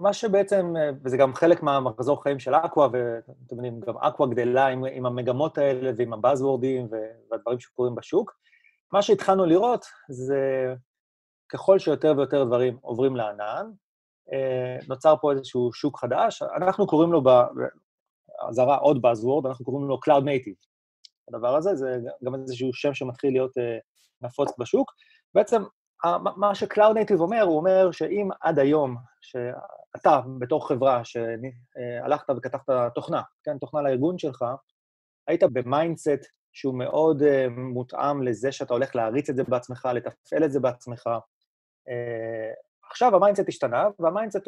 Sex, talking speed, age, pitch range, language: male, 135 wpm, 30-49, 125-160 Hz, Hebrew